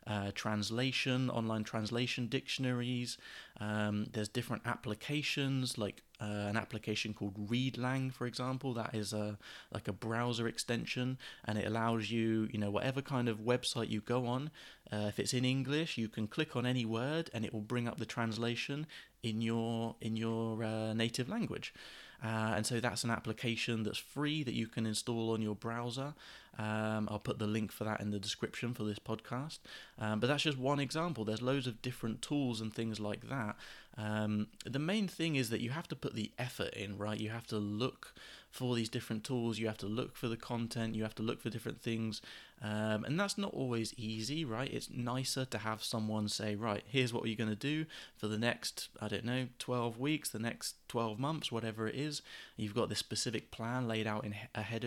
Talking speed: 200 wpm